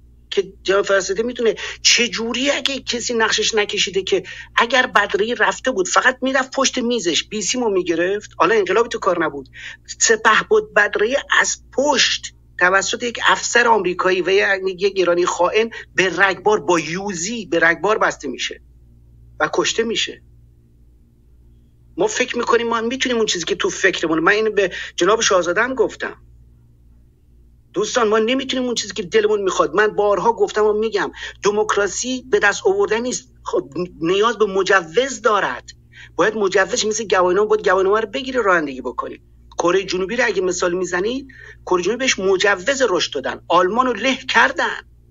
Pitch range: 160-240 Hz